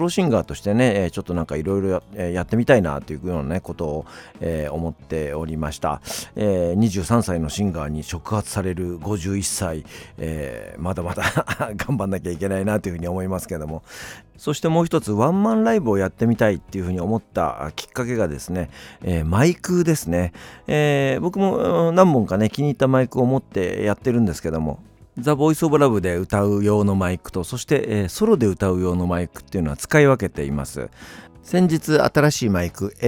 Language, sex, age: Japanese, male, 40-59